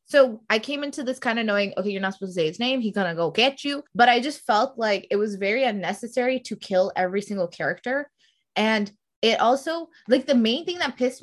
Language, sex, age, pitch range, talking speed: English, female, 20-39, 200-255 Hz, 240 wpm